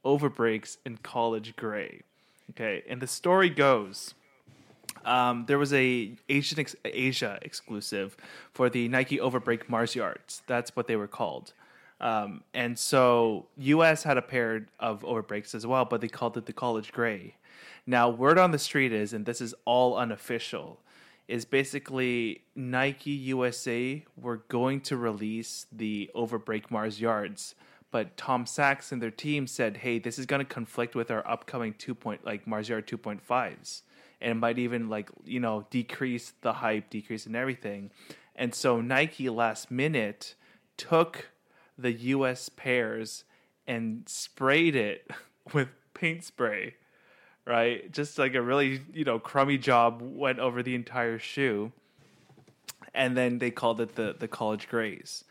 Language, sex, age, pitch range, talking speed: English, male, 20-39, 115-135 Hz, 155 wpm